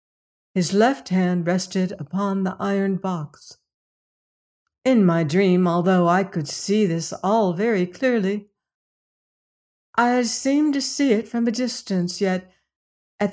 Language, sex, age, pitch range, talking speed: English, female, 60-79, 180-230 Hz, 130 wpm